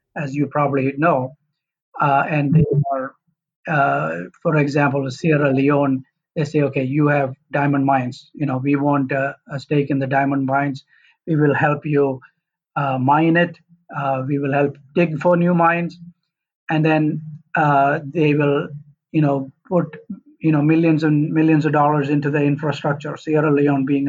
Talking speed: 165 wpm